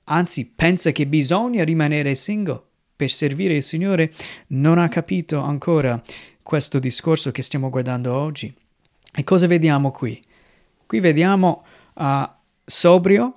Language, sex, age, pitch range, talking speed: Italian, male, 30-49, 150-180 Hz, 125 wpm